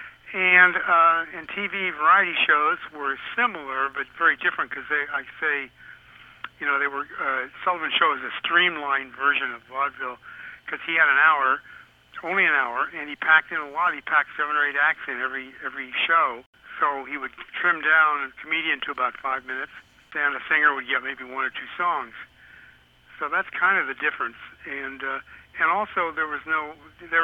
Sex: male